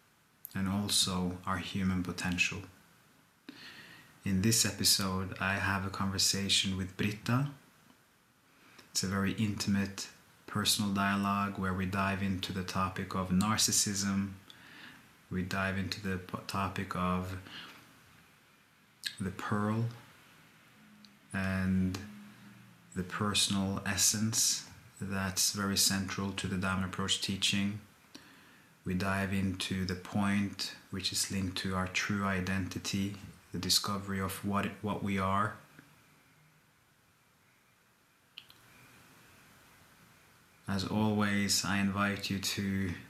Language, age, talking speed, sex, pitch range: English, 30-49, 100 wpm, male, 95-100 Hz